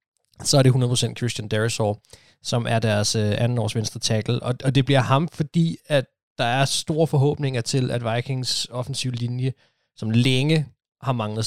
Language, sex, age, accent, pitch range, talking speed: Danish, male, 20-39, native, 110-130 Hz, 175 wpm